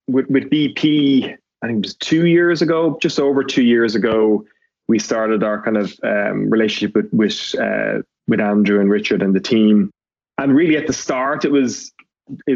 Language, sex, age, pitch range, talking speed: English, male, 20-39, 105-125 Hz, 190 wpm